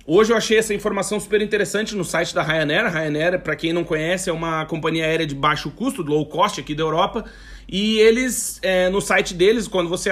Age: 40-59